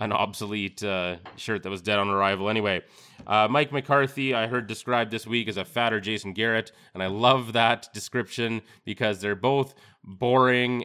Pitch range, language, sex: 100-120 Hz, English, male